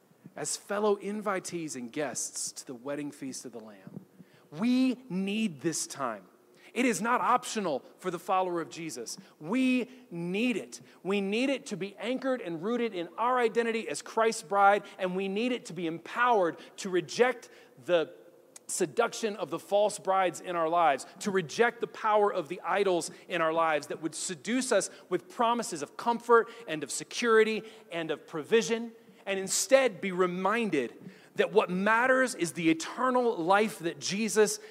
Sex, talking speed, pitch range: male, 170 wpm, 175-230 Hz